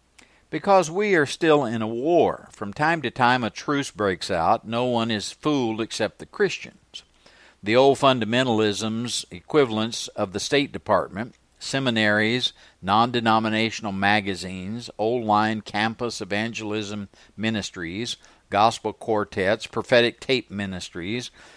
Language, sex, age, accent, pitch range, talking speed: English, male, 60-79, American, 105-135 Hz, 115 wpm